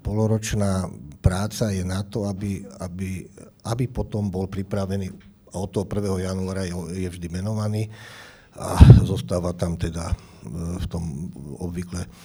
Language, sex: Slovak, male